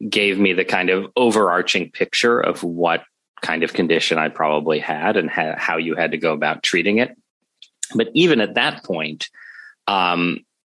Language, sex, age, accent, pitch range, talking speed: English, male, 30-49, American, 85-115 Hz, 175 wpm